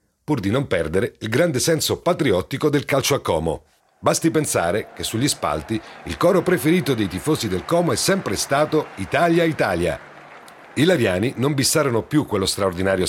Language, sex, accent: Italian, male, native